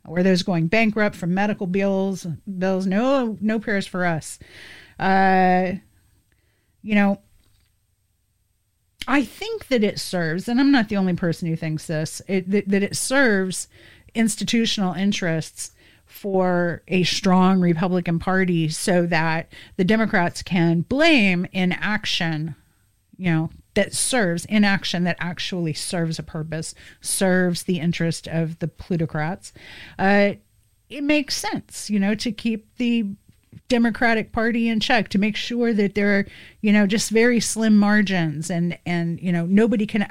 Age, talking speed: 40-59, 145 wpm